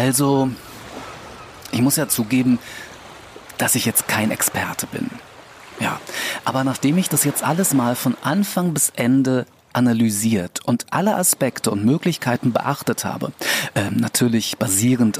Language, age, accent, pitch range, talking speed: German, 40-59, German, 125-160 Hz, 130 wpm